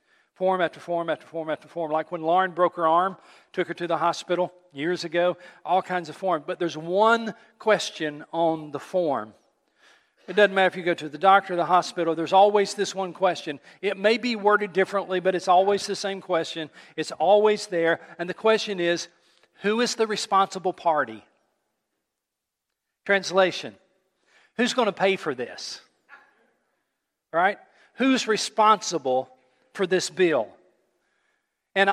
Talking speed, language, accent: 160 wpm, English, American